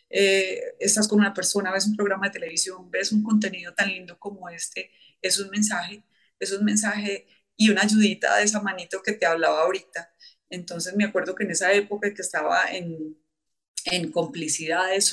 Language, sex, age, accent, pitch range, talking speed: Spanish, female, 30-49, Colombian, 175-220 Hz, 180 wpm